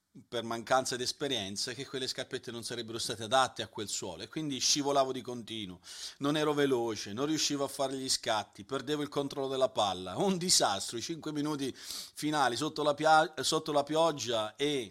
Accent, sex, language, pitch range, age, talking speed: native, male, Italian, 110-145 Hz, 40-59, 175 wpm